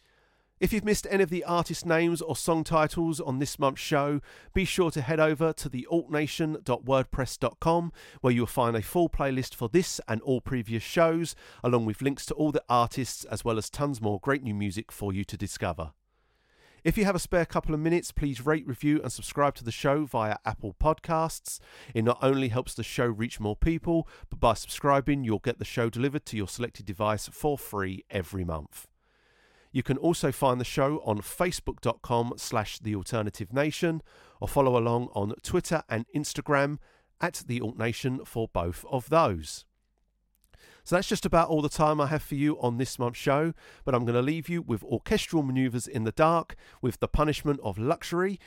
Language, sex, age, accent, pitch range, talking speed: English, male, 40-59, British, 115-155 Hz, 190 wpm